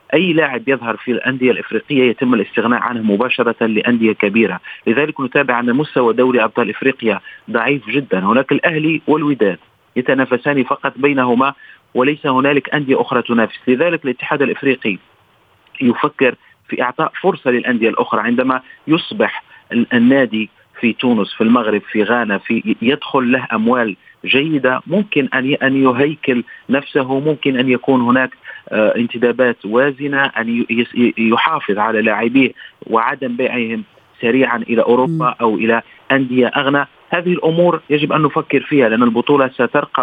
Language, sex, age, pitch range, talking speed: Arabic, male, 40-59, 120-145 Hz, 130 wpm